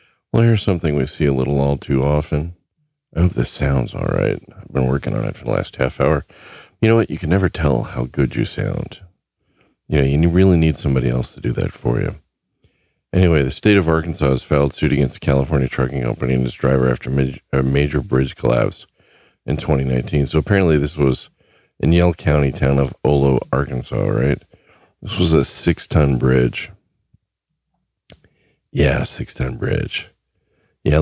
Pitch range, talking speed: 65-80 Hz, 180 wpm